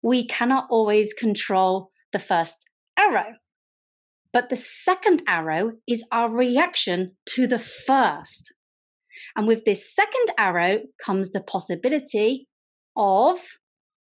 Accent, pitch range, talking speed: British, 190-275 Hz, 110 wpm